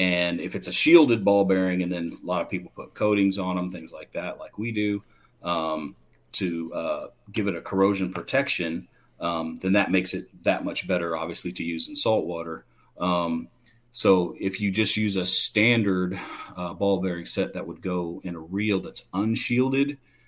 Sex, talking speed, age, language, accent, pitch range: male, 190 wpm, 40-59, English, American, 85-100 Hz